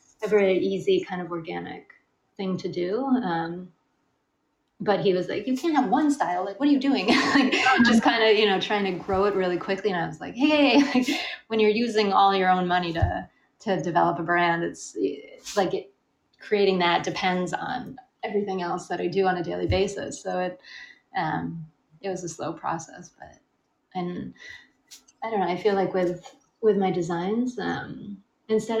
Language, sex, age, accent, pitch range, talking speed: English, female, 30-49, American, 175-215 Hz, 190 wpm